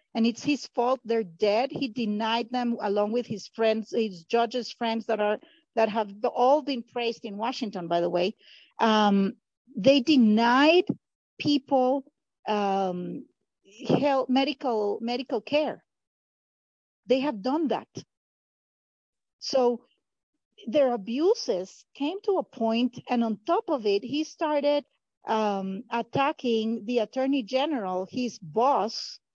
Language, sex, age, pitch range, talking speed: English, female, 50-69, 220-280 Hz, 125 wpm